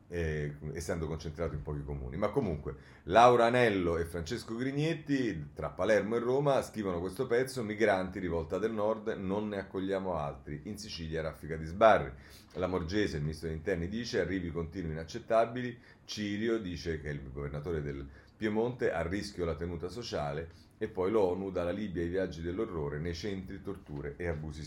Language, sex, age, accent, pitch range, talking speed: Italian, male, 40-59, native, 80-110 Hz, 170 wpm